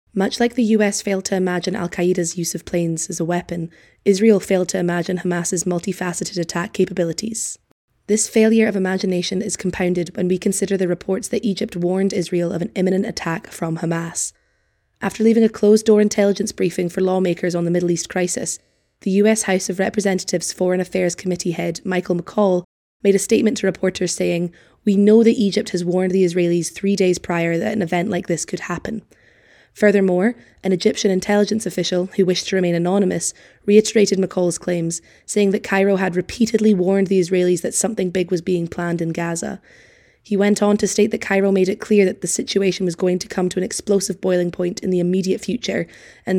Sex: female